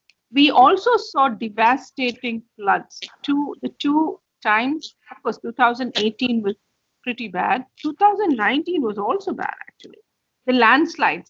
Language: English